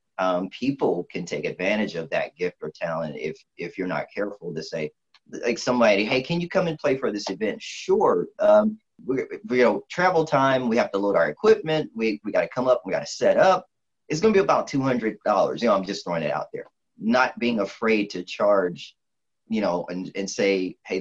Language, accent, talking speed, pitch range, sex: English, American, 225 wpm, 95-135 Hz, male